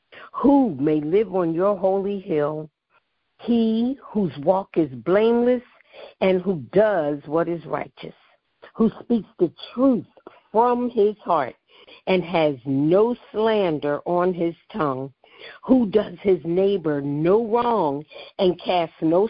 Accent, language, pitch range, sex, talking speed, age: American, English, 155-210 Hz, female, 130 wpm, 50-69